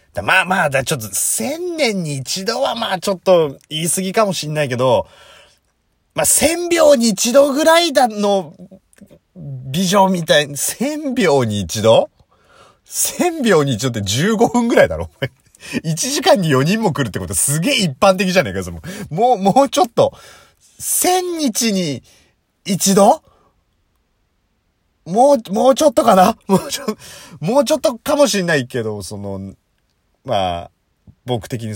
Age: 30-49